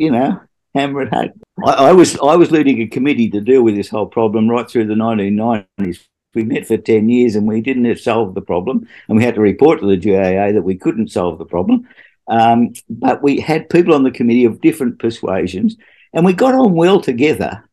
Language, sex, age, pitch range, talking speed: English, male, 50-69, 110-140 Hz, 220 wpm